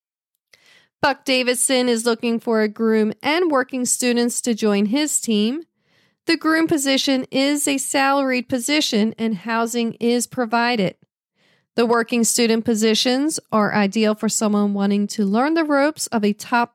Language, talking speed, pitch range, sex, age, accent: English, 145 wpm, 220-280 Hz, female, 40-59, American